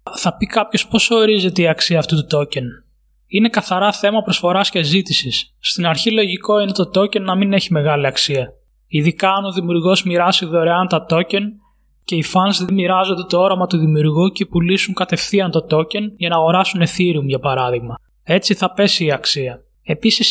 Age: 20-39